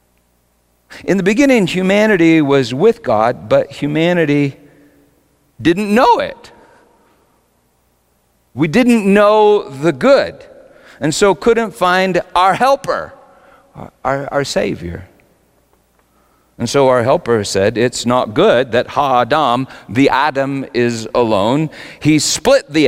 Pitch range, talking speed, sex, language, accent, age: 120-190 Hz, 115 wpm, male, English, American, 50-69